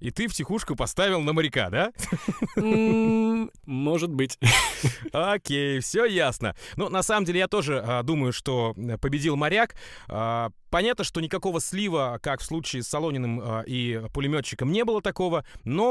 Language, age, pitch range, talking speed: Russian, 30-49, 125-185 Hz, 140 wpm